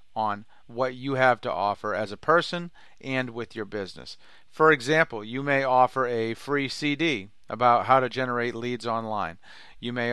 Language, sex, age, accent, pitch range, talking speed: English, male, 40-59, American, 115-135 Hz, 170 wpm